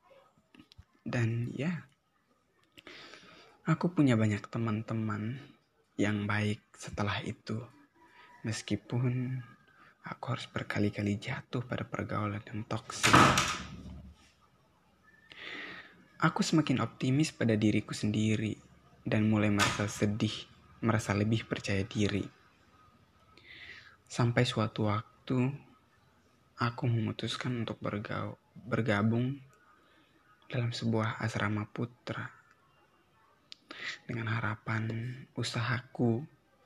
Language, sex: Indonesian, male